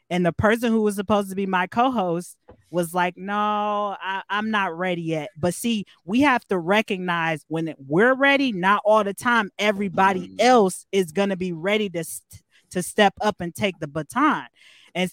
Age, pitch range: 20-39, 170-205 Hz